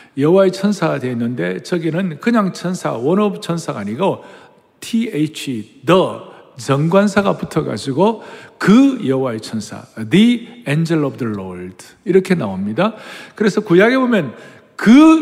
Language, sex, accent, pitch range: Korean, male, native, 145-210 Hz